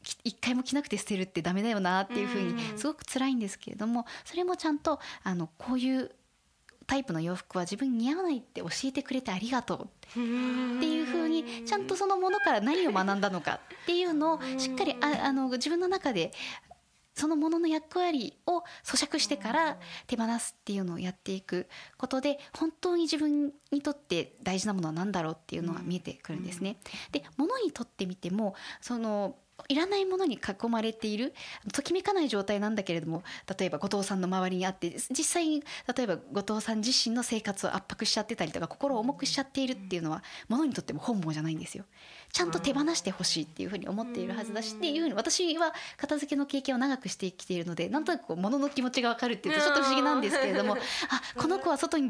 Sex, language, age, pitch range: female, Japanese, 20-39, 200-305 Hz